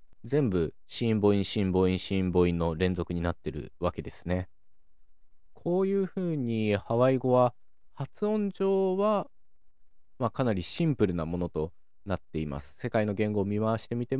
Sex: male